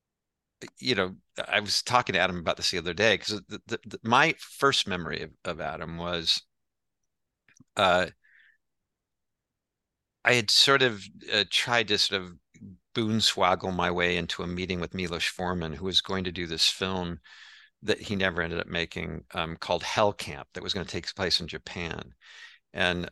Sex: male